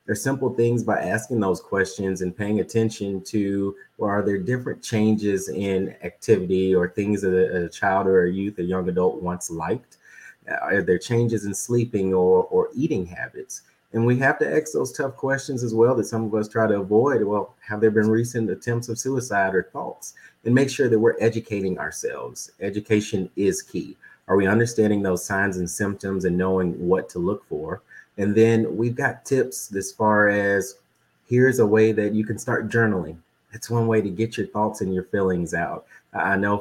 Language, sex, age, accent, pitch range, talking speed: English, male, 30-49, American, 95-115 Hz, 200 wpm